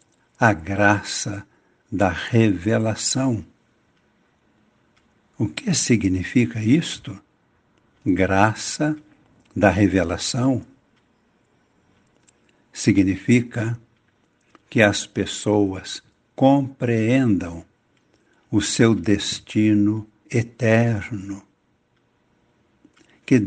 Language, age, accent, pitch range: Portuguese, 60-79, Brazilian, 100-130 Hz